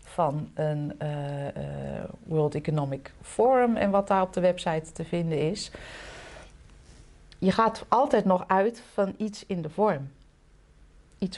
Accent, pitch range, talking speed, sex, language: Dutch, 160-210 Hz, 140 wpm, female, Dutch